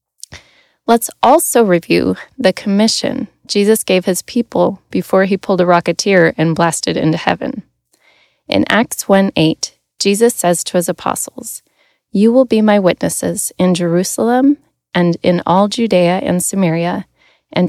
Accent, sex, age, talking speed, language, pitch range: American, female, 30-49, 135 wpm, English, 165-205 Hz